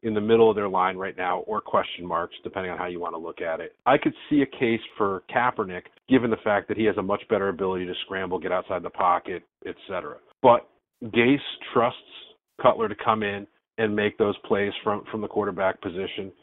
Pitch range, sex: 100-125 Hz, male